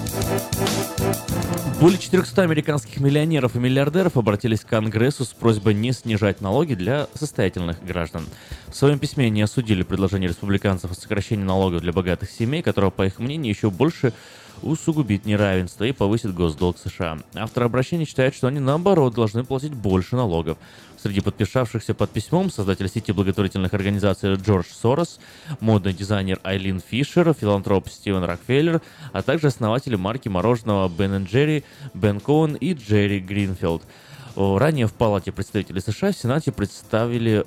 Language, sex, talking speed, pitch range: Russian, male, 145 wpm, 95-135 Hz